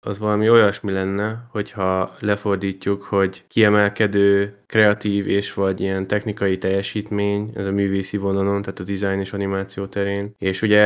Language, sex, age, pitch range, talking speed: Hungarian, male, 20-39, 100-105 Hz, 145 wpm